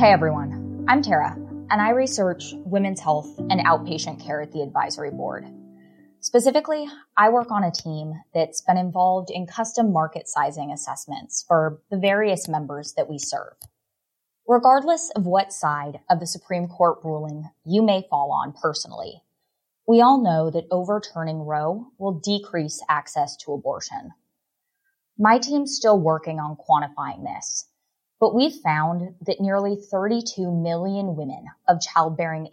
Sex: female